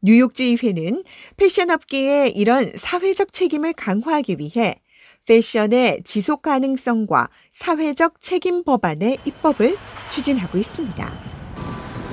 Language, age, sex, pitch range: Korean, 40-59, female, 210-295 Hz